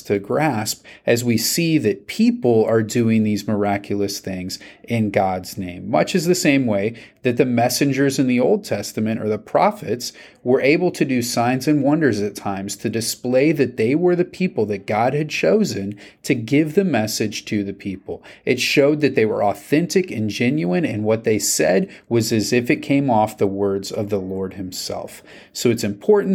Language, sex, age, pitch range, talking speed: English, male, 30-49, 100-130 Hz, 190 wpm